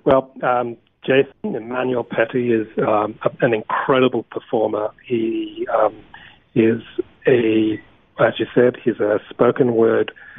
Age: 40-59